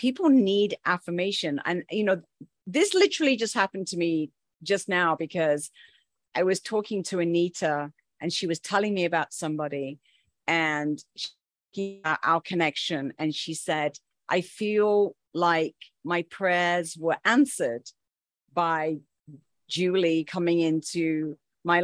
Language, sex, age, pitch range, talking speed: English, female, 40-59, 160-210 Hz, 125 wpm